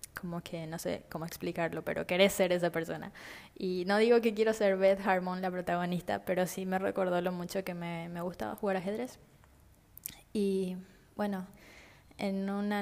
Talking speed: 175 wpm